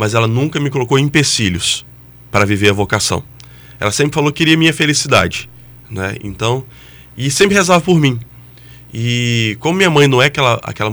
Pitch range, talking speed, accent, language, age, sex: 105-135 Hz, 175 wpm, Brazilian, Portuguese, 20-39, male